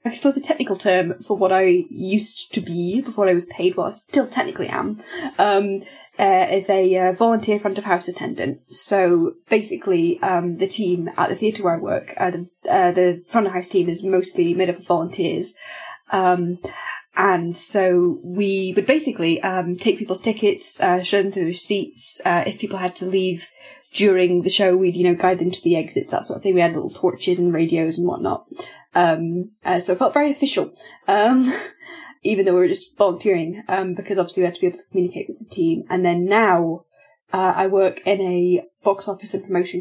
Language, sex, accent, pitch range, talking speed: English, female, British, 180-220 Hz, 210 wpm